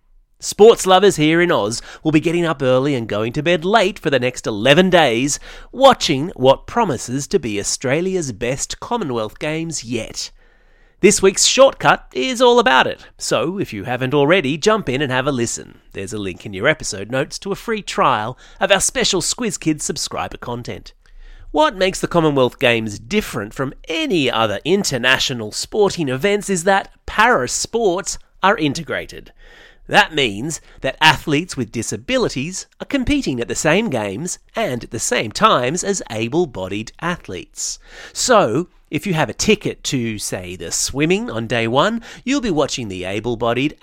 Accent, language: Australian, English